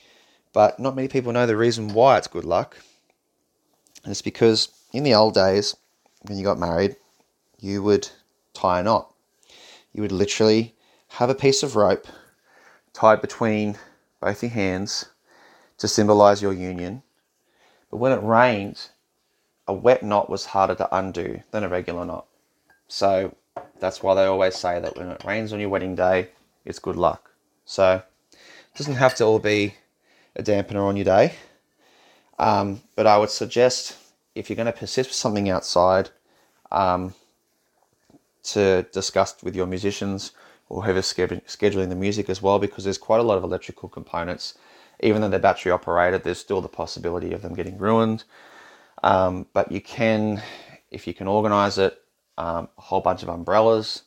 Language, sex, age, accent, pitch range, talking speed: English, male, 20-39, Australian, 95-110 Hz, 165 wpm